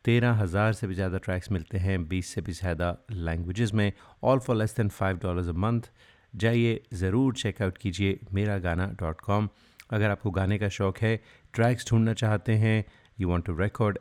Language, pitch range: Hindi, 95-115 Hz